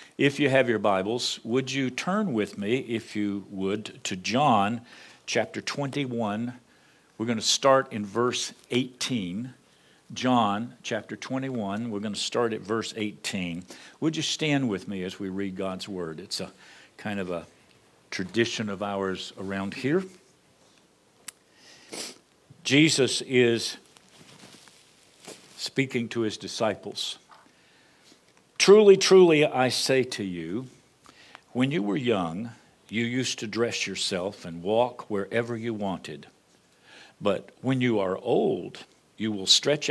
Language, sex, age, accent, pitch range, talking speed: English, male, 50-69, American, 100-130 Hz, 130 wpm